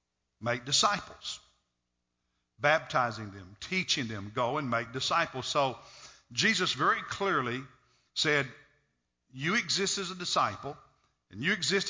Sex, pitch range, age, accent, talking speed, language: male, 130-155 Hz, 50-69, American, 115 wpm, English